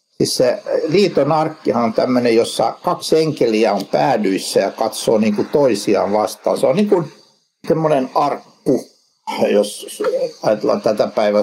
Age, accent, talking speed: 60-79, native, 140 wpm